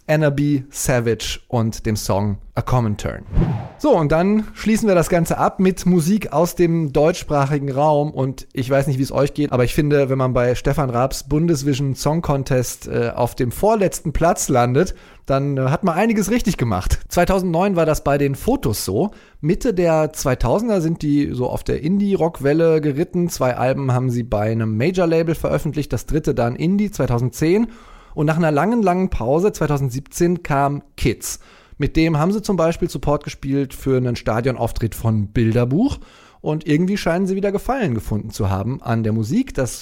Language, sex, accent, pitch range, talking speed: German, male, German, 125-175 Hz, 180 wpm